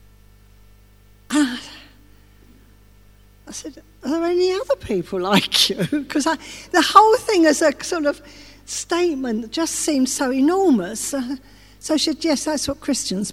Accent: British